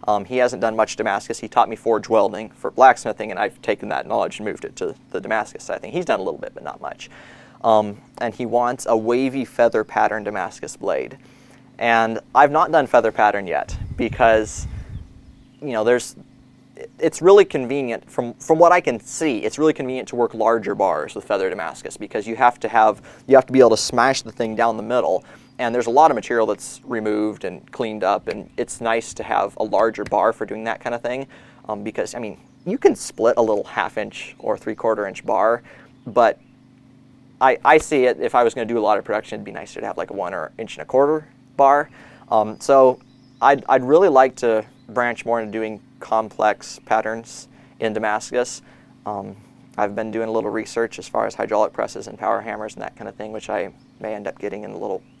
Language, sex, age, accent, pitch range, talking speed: English, male, 20-39, American, 110-130 Hz, 220 wpm